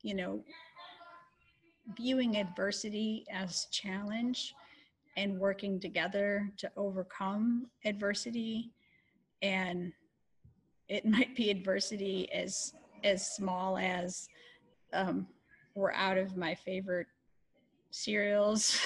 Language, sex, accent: English, female, American